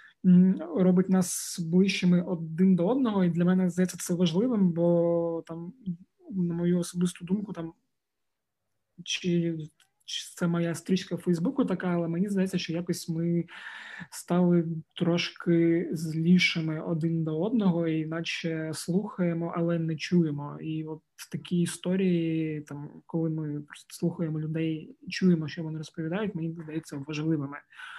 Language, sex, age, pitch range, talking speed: Ukrainian, male, 20-39, 160-180 Hz, 135 wpm